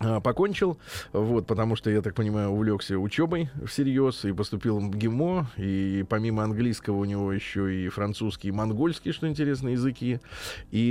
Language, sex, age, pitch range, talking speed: Russian, male, 20-39, 100-125 Hz, 155 wpm